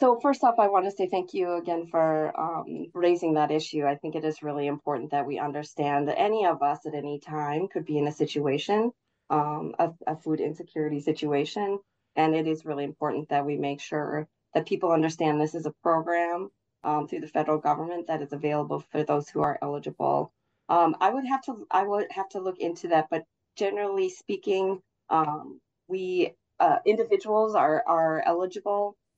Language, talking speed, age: English, 190 wpm, 30-49